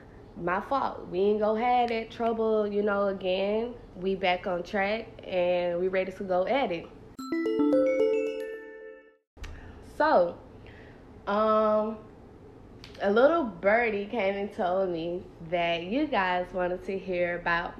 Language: English